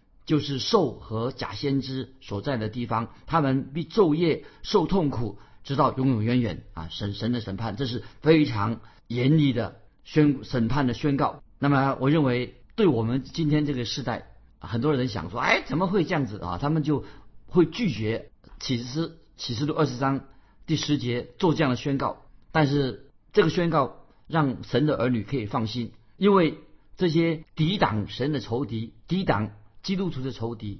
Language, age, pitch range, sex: Chinese, 50-69, 115-155 Hz, male